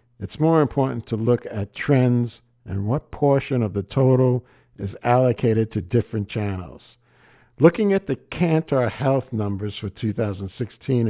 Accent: American